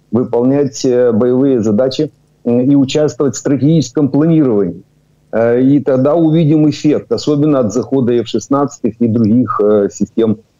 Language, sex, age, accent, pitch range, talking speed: Ukrainian, male, 50-69, native, 115-140 Hz, 110 wpm